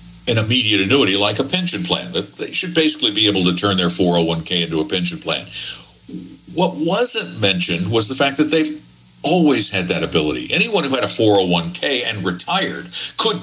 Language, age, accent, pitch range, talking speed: English, 60-79, American, 100-150 Hz, 185 wpm